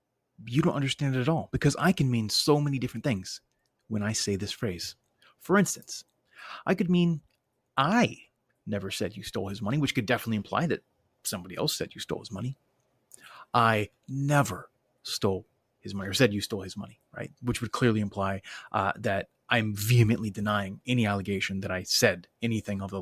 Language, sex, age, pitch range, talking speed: English, male, 30-49, 100-130 Hz, 190 wpm